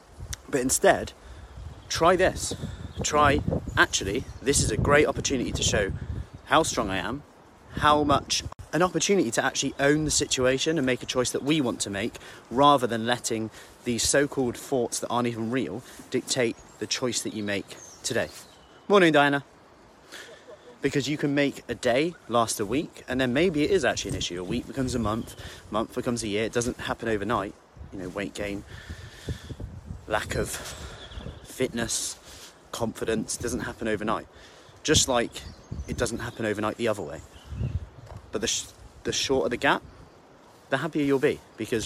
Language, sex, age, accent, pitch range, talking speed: English, male, 30-49, British, 100-130 Hz, 170 wpm